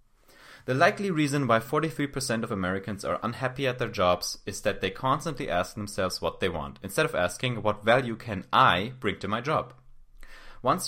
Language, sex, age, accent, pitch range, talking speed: English, male, 30-49, German, 100-135 Hz, 180 wpm